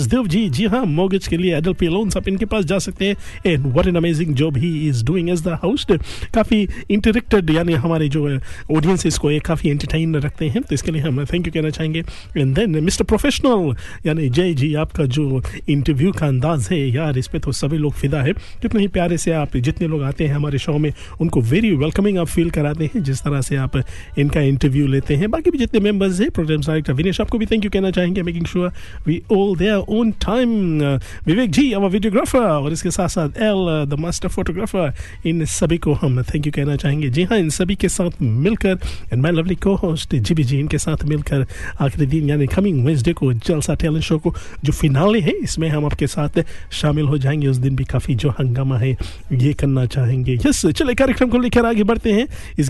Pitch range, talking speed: 145-190 Hz, 180 wpm